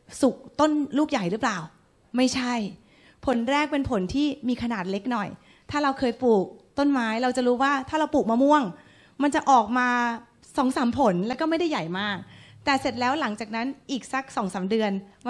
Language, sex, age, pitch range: Thai, female, 20-39, 220-275 Hz